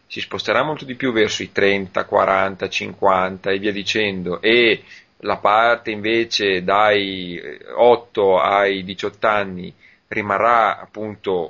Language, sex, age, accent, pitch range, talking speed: Italian, male, 30-49, native, 100-115 Hz, 125 wpm